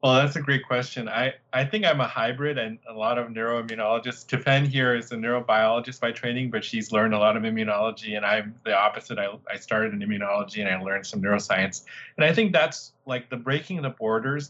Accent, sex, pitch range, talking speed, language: American, male, 105-130 Hz, 220 wpm, English